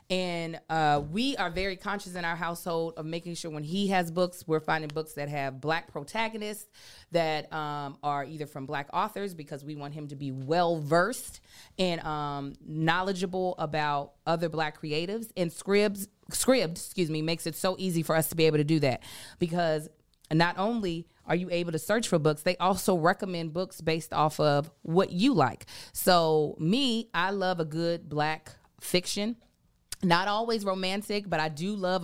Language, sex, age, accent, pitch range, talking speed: English, female, 30-49, American, 155-195 Hz, 180 wpm